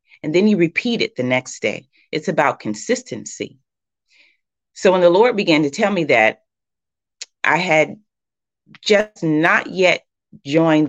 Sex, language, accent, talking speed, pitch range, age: female, English, American, 145 wpm, 140-180 Hz, 30-49